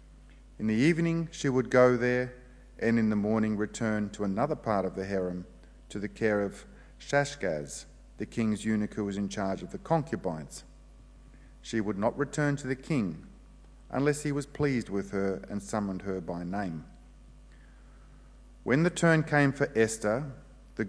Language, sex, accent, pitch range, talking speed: English, male, Australian, 100-135 Hz, 165 wpm